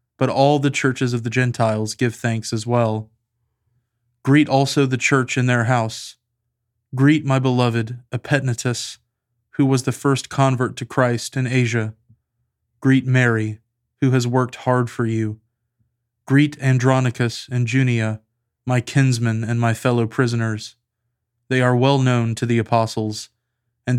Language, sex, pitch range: English, male, 115-130 Hz